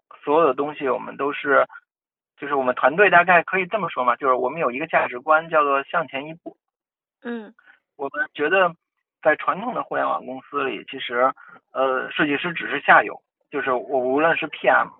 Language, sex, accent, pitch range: Chinese, male, native, 135-195 Hz